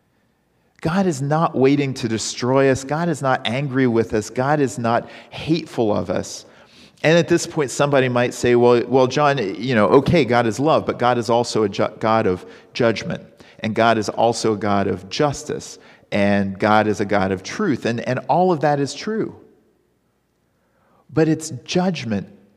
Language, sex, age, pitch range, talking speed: English, male, 40-59, 110-160 Hz, 185 wpm